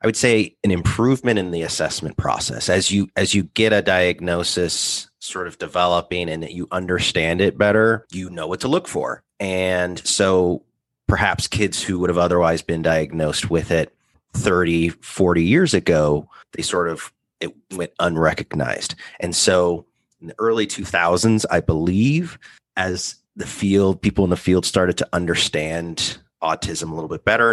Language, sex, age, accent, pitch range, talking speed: English, male, 30-49, American, 85-105 Hz, 165 wpm